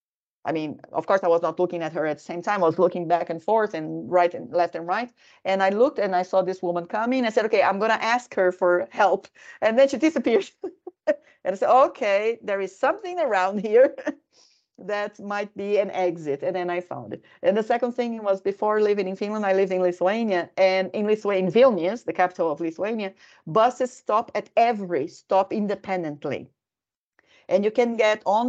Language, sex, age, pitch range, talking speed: Finnish, female, 40-59, 180-245 Hz, 215 wpm